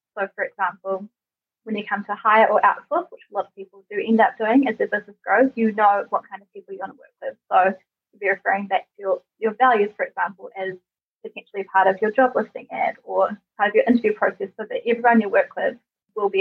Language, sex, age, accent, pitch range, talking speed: English, female, 20-39, Australian, 200-265 Hz, 250 wpm